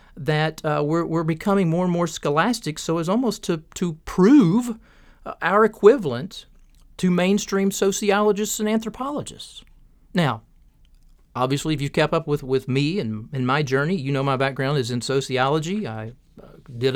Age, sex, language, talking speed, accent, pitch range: 40-59, male, English, 160 wpm, American, 135-195 Hz